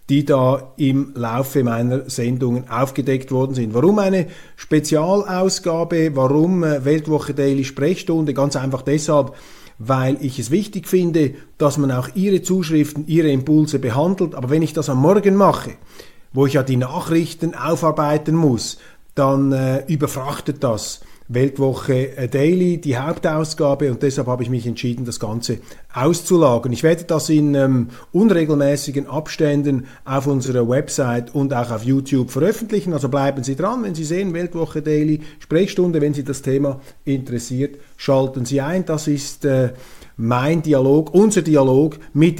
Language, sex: German, male